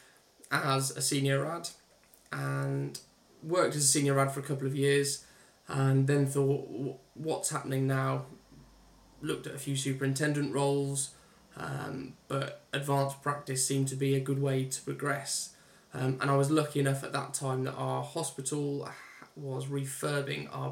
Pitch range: 135-140 Hz